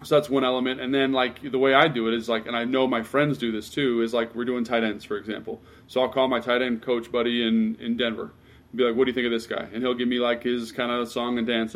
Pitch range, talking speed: 120-135 Hz, 315 wpm